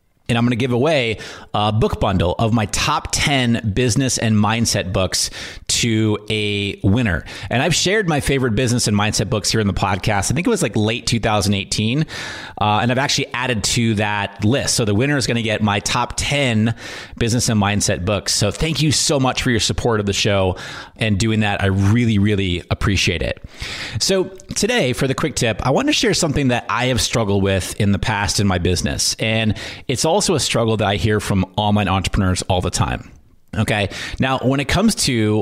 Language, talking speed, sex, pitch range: English, 210 wpm, male, 100-125 Hz